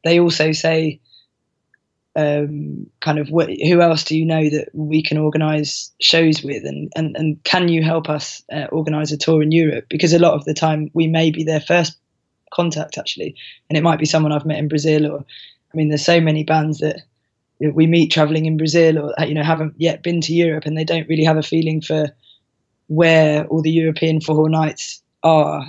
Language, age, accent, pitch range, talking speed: English, 20-39, British, 150-160 Hz, 205 wpm